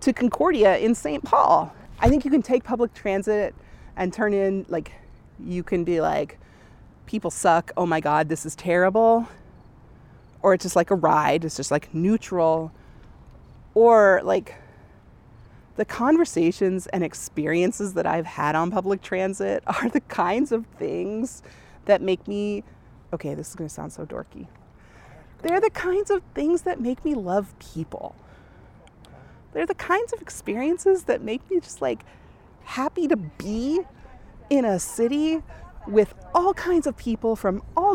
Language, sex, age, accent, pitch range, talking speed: English, female, 30-49, American, 170-275 Hz, 155 wpm